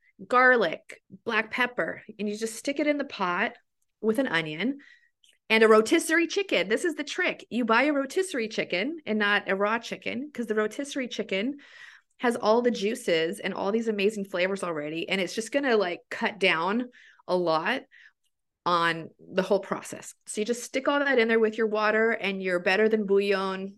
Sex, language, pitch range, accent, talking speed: female, English, 190-250 Hz, American, 190 wpm